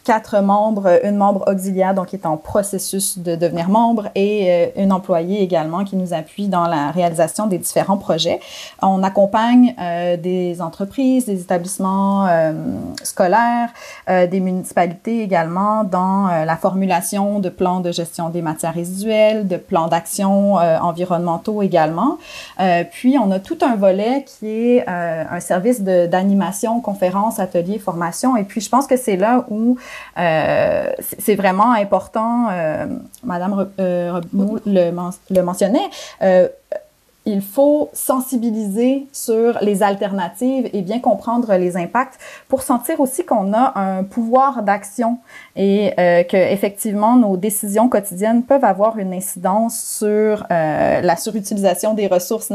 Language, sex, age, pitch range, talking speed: French, female, 30-49, 180-225 Hz, 150 wpm